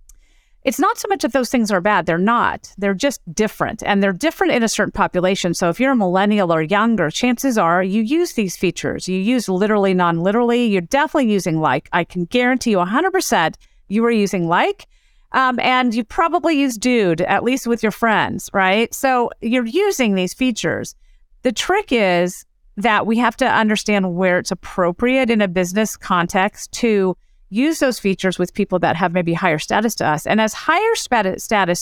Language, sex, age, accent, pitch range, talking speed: English, female, 40-59, American, 185-250 Hz, 190 wpm